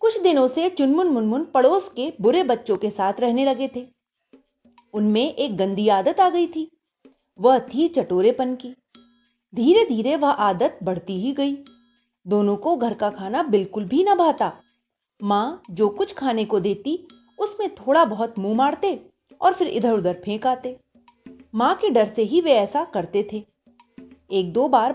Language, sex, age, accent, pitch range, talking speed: Hindi, female, 30-49, native, 215-280 Hz, 170 wpm